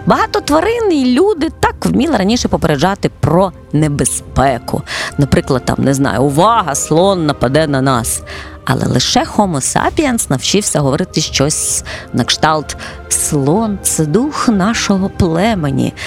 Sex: female